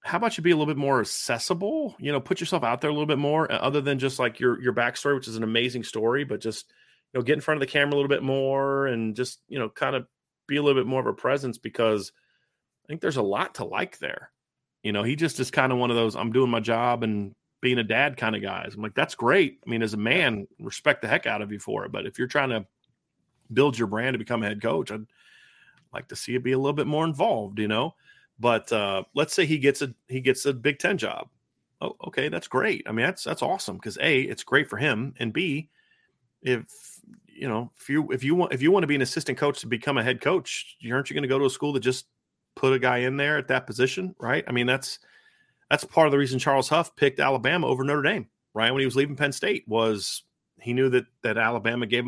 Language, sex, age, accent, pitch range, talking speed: English, male, 30-49, American, 115-145 Hz, 265 wpm